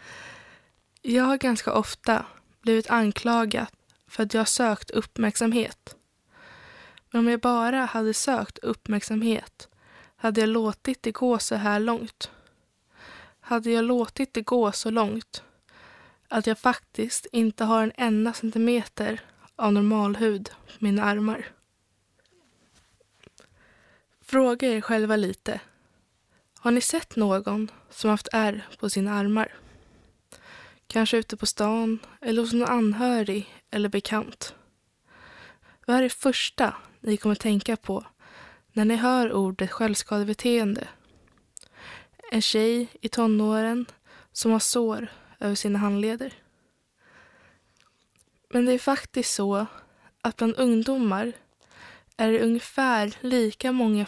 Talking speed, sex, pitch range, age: 120 wpm, female, 215-240 Hz, 20-39